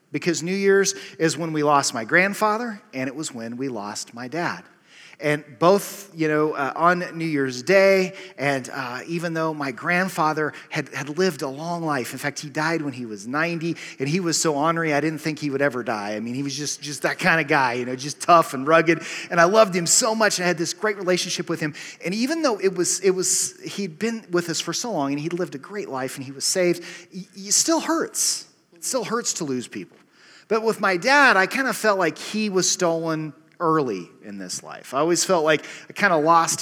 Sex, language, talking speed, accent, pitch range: male, English, 240 wpm, American, 140-175 Hz